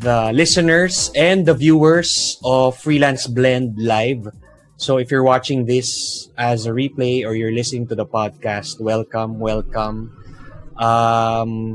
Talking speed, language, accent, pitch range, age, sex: 135 wpm, English, Filipino, 110-135 Hz, 20-39, male